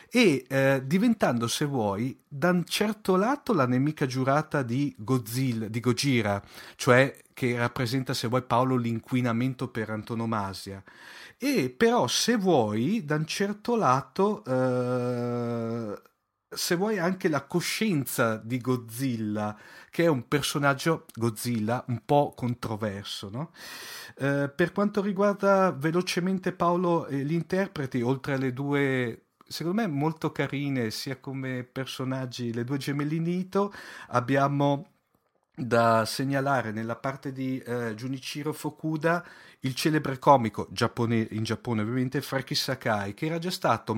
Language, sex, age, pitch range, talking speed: Italian, male, 40-59, 120-160 Hz, 130 wpm